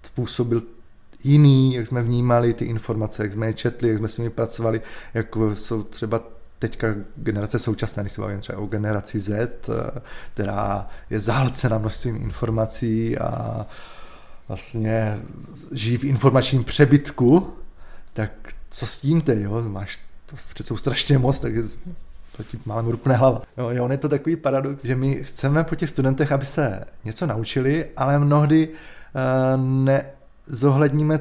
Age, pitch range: 20-39, 110-140 Hz